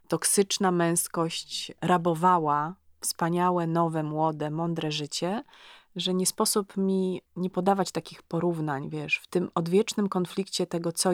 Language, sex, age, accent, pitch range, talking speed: Polish, female, 30-49, native, 165-195 Hz, 125 wpm